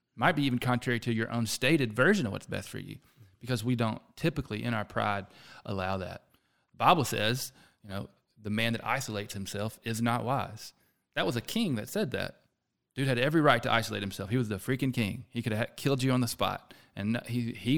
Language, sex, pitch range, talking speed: English, male, 110-130 Hz, 225 wpm